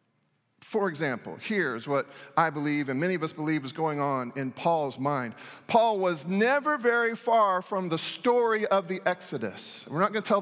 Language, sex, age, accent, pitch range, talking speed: English, male, 40-59, American, 175-230 Hz, 190 wpm